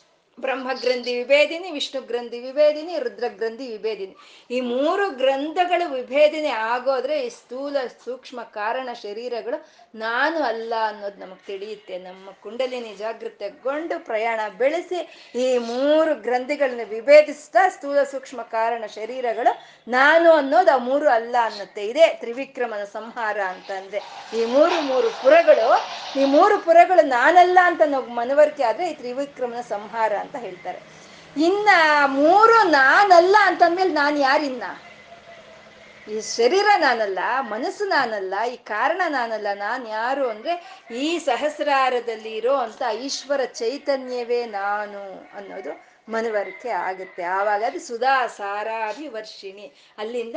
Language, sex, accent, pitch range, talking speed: Kannada, female, native, 225-315 Hz, 115 wpm